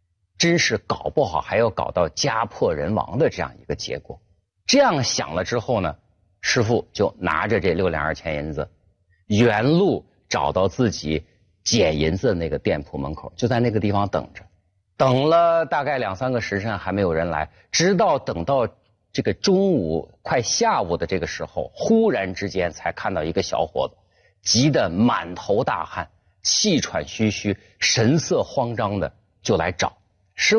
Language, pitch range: Chinese, 95-145 Hz